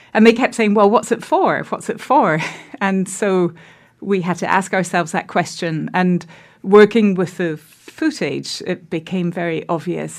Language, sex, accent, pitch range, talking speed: English, female, British, 160-180 Hz, 170 wpm